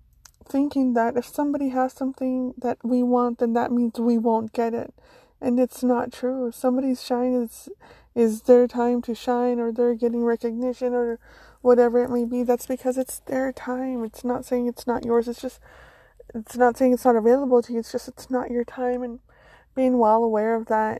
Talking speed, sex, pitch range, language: 200 wpm, female, 225-250 Hz, English